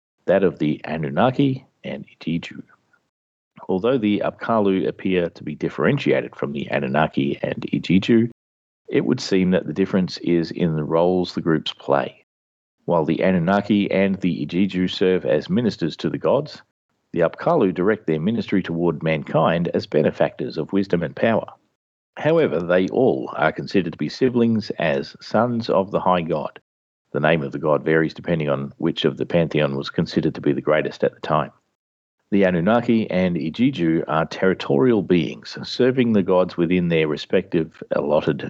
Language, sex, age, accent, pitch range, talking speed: English, male, 40-59, Australian, 80-100 Hz, 165 wpm